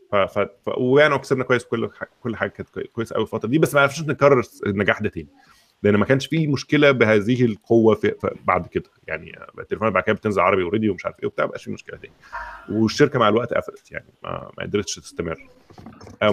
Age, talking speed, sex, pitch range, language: 30-49, 200 wpm, male, 105-145 Hz, Arabic